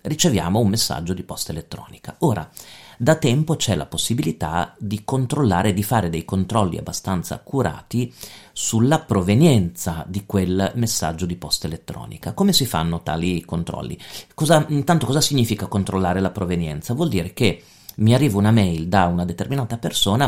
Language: Italian